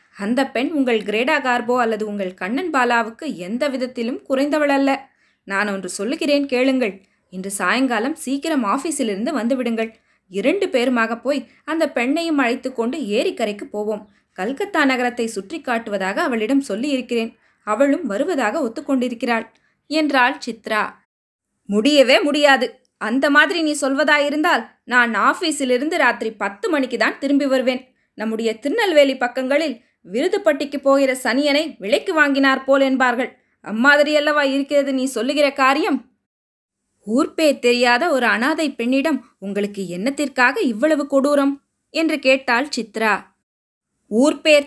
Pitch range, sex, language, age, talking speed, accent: 235-295 Hz, female, Tamil, 20-39, 110 wpm, native